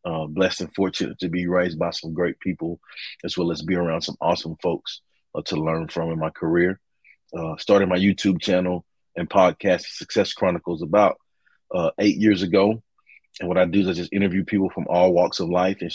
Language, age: English, 30-49